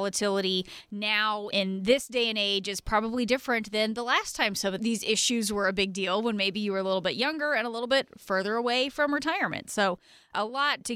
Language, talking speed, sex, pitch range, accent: English, 225 wpm, female, 200-255 Hz, American